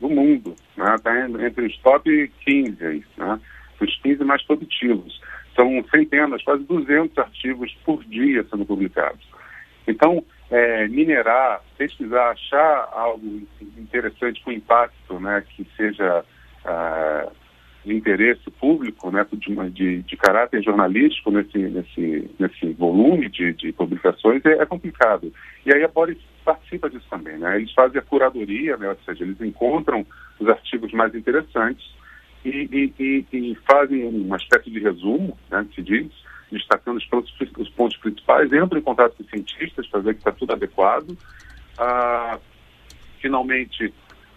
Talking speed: 140 wpm